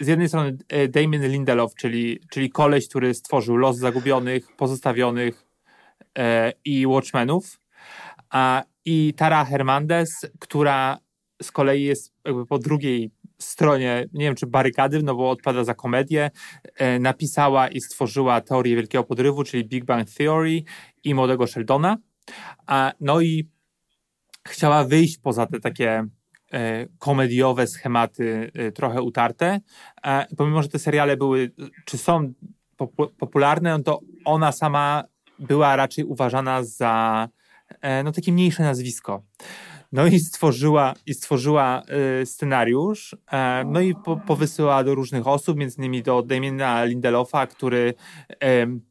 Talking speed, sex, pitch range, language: 115 wpm, male, 125-150 Hz, Polish